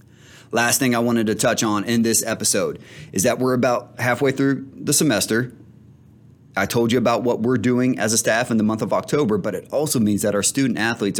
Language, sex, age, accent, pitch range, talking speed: English, male, 30-49, American, 90-115 Hz, 220 wpm